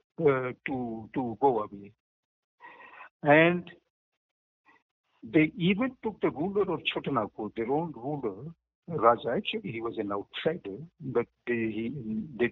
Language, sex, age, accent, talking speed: English, male, 60-79, Indian, 125 wpm